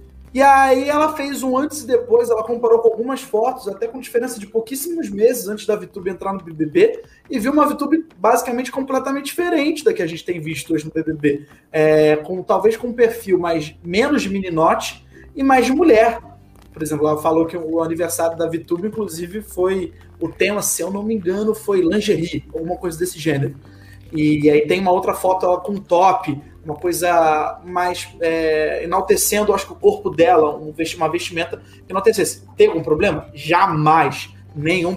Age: 20-39